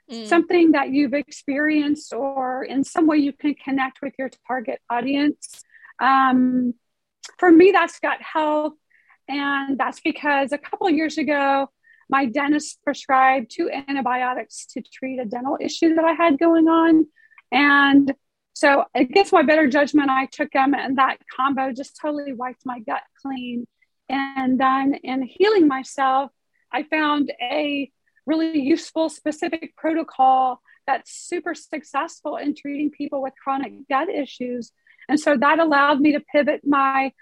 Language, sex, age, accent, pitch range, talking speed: English, female, 40-59, American, 265-310 Hz, 150 wpm